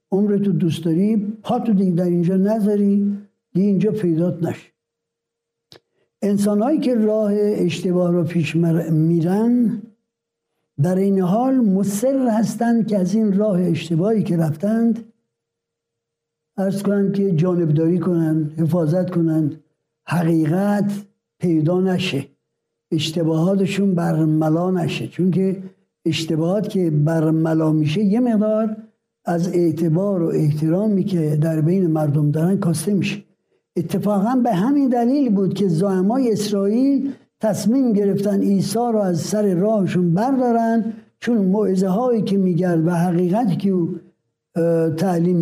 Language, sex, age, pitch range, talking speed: Persian, male, 60-79, 165-210 Hz, 115 wpm